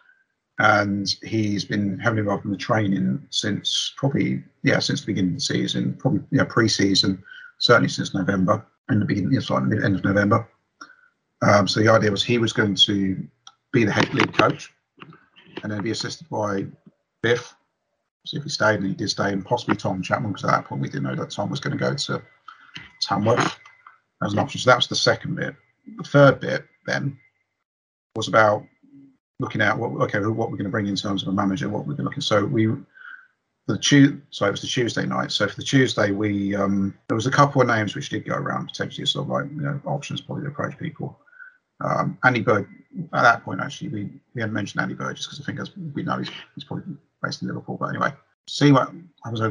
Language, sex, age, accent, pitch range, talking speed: English, male, 40-59, British, 100-145 Hz, 220 wpm